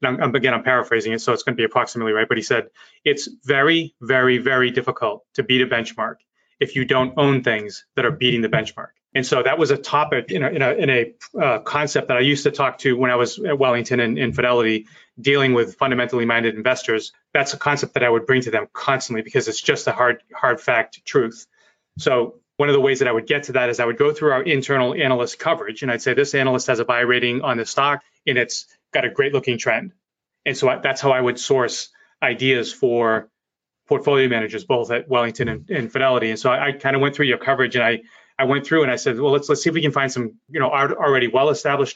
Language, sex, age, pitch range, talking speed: English, male, 30-49, 120-140 Hz, 240 wpm